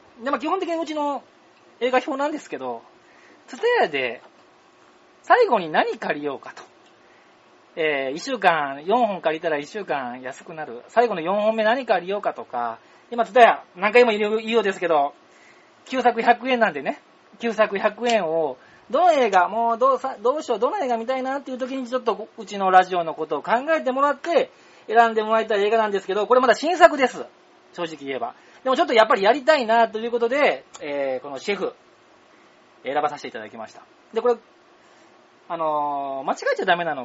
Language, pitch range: Japanese, 170-260 Hz